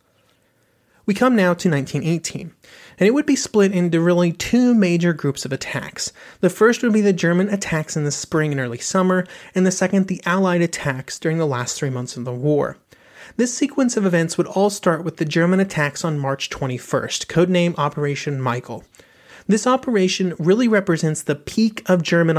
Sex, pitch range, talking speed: male, 145-190 Hz, 185 wpm